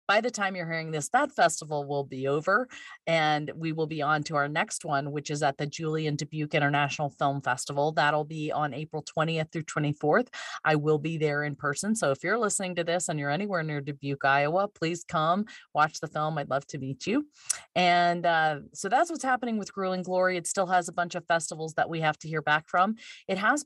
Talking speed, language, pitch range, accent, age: 225 wpm, English, 145-175 Hz, American, 40-59